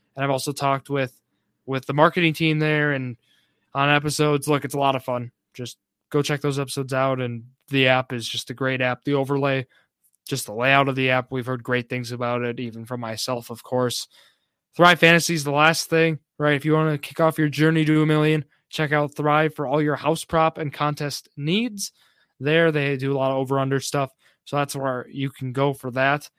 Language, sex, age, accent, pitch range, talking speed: English, male, 20-39, American, 135-160 Hz, 220 wpm